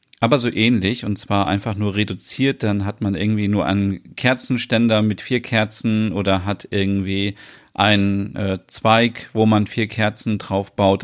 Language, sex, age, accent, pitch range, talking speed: German, male, 40-59, German, 100-120 Hz, 165 wpm